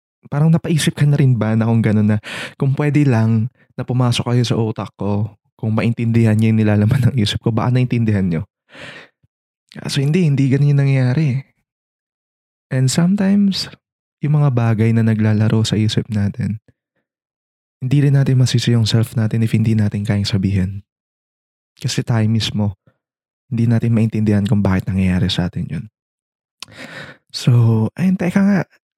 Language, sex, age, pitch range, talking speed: English, male, 20-39, 100-125 Hz, 150 wpm